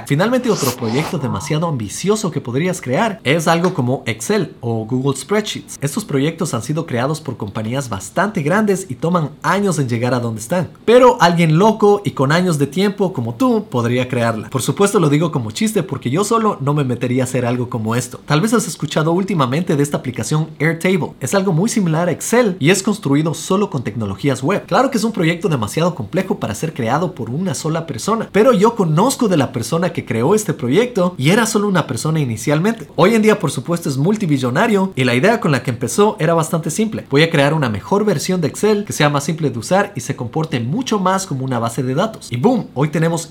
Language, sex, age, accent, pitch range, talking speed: Spanish, male, 30-49, Mexican, 135-195 Hz, 220 wpm